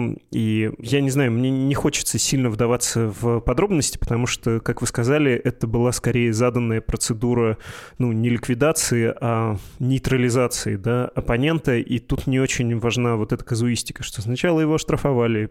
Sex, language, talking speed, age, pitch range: male, Russian, 155 wpm, 20-39, 110-130 Hz